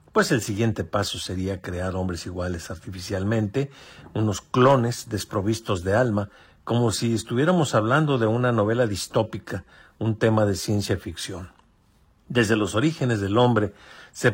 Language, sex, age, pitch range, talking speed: Spanish, male, 50-69, 95-120 Hz, 140 wpm